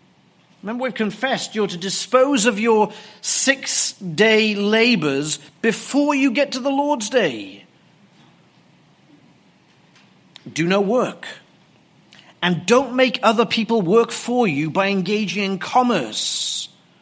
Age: 40-59